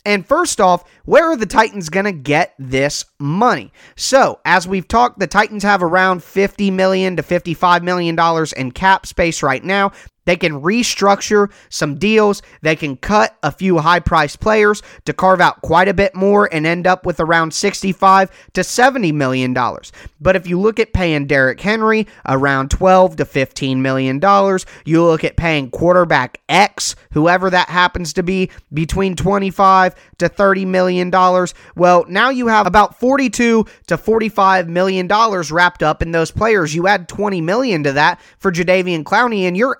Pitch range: 160-200 Hz